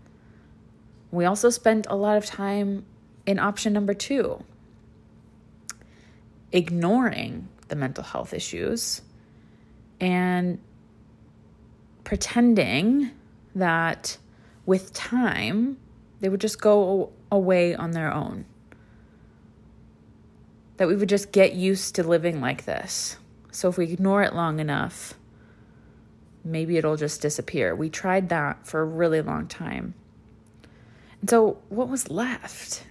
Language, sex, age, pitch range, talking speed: English, female, 20-39, 160-200 Hz, 115 wpm